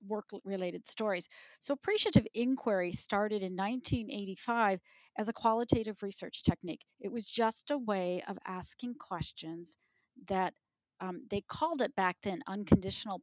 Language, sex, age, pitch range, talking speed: English, female, 40-59, 195-225 Hz, 130 wpm